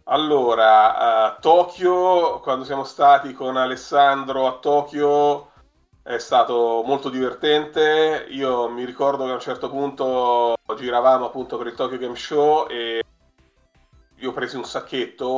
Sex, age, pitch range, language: male, 30-49, 110-140 Hz, Italian